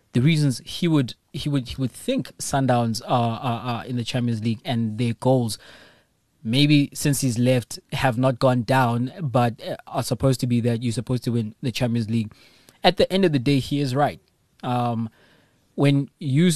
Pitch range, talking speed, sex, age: 115-145 Hz, 190 wpm, male, 20-39